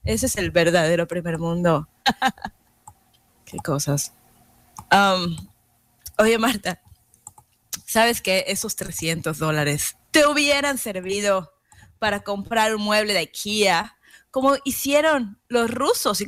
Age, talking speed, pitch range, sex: 20-39, 110 wpm, 195-255 Hz, female